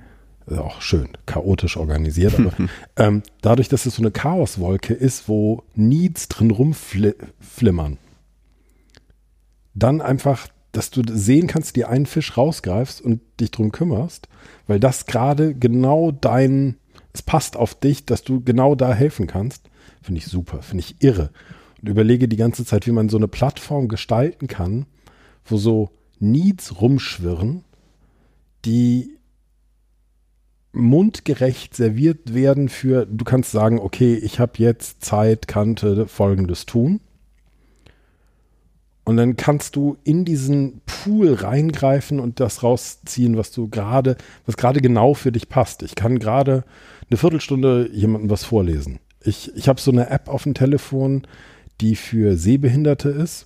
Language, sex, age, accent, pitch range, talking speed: German, male, 50-69, German, 105-135 Hz, 145 wpm